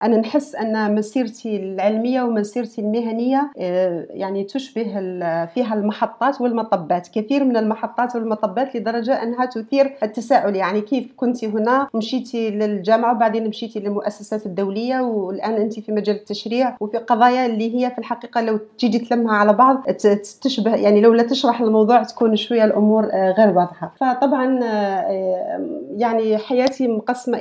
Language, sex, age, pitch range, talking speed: Arabic, female, 40-59, 205-235 Hz, 135 wpm